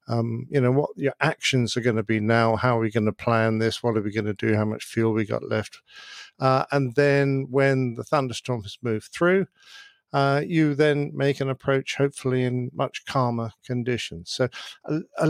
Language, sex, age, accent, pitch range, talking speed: English, male, 50-69, British, 115-145 Hz, 210 wpm